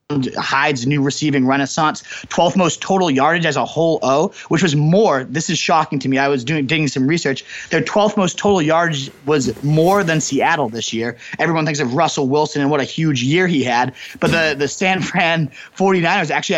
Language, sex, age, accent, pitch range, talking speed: English, male, 30-49, American, 140-170 Hz, 205 wpm